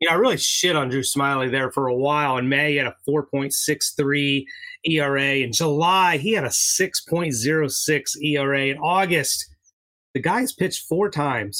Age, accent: 30-49, American